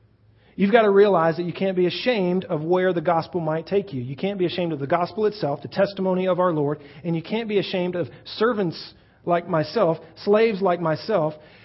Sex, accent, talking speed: male, American, 210 wpm